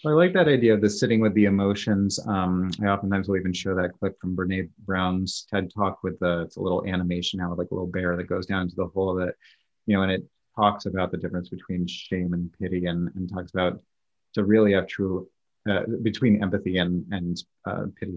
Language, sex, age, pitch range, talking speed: English, male, 30-49, 90-105 Hz, 230 wpm